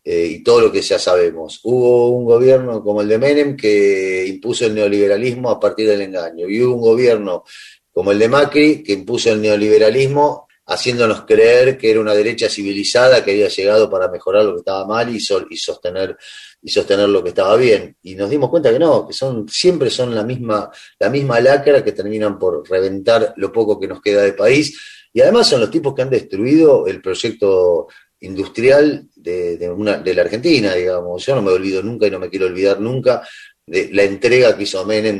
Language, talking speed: Spanish, 195 wpm